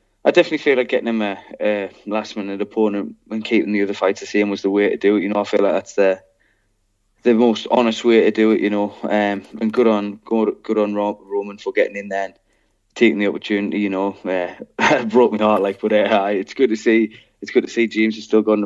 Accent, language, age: British, English, 20-39